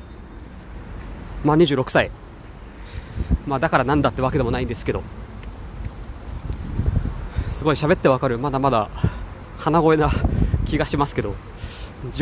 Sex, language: male, Japanese